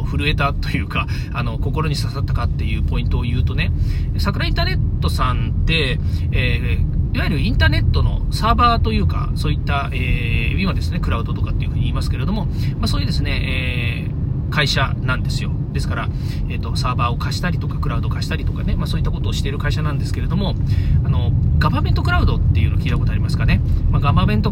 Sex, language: male, Japanese